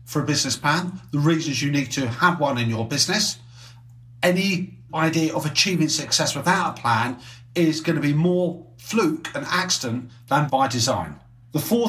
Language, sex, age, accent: English, male, 40-59, British